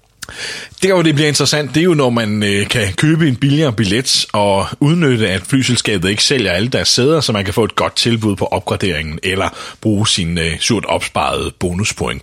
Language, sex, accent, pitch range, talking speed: Danish, male, native, 100-135 Hz, 200 wpm